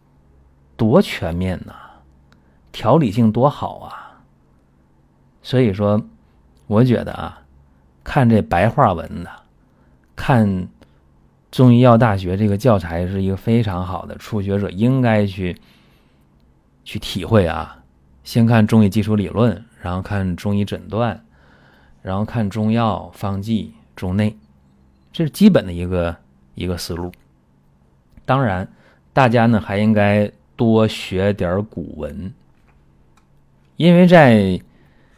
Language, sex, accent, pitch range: Chinese, male, native, 75-115 Hz